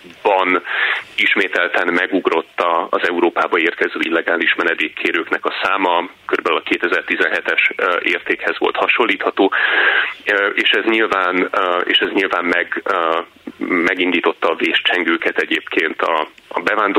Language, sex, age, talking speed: Hungarian, male, 30-49, 100 wpm